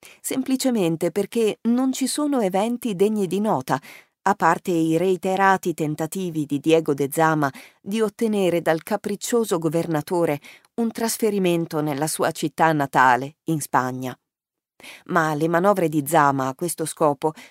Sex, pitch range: female, 160-215 Hz